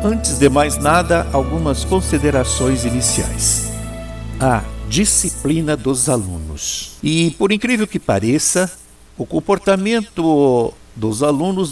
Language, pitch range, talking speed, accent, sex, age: Portuguese, 110-165 Hz, 100 wpm, Brazilian, male, 60-79